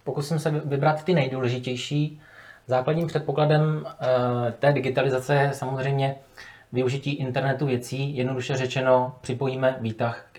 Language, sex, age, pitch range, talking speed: Czech, male, 20-39, 125-145 Hz, 110 wpm